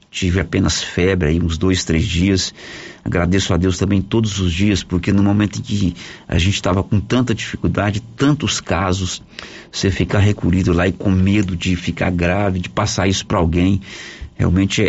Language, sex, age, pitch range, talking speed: Portuguese, male, 50-69, 100-165 Hz, 175 wpm